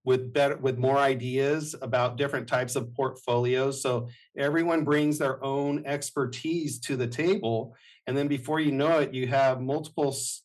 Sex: male